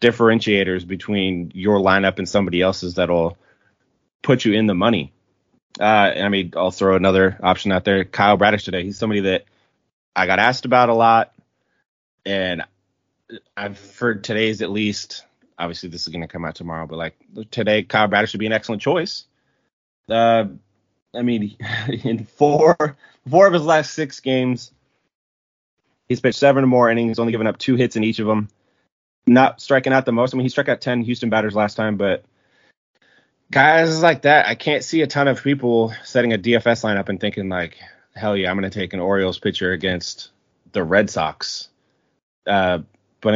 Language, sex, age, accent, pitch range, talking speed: English, male, 20-39, American, 95-120 Hz, 185 wpm